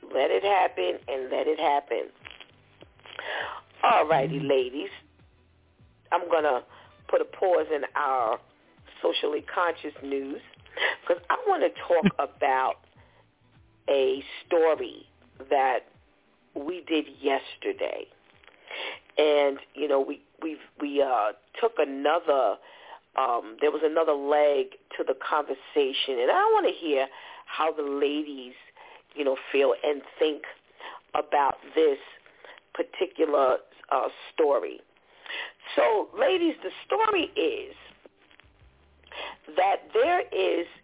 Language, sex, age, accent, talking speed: English, female, 40-59, American, 110 wpm